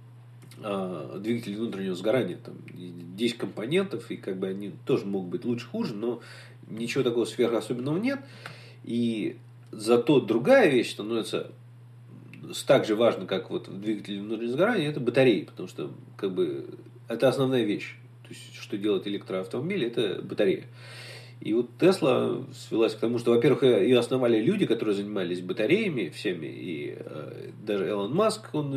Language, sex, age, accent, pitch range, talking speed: Russian, male, 40-59, native, 115-125 Hz, 145 wpm